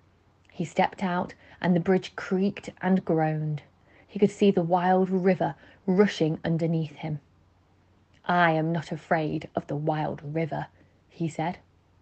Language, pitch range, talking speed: English, 150-185 Hz, 140 wpm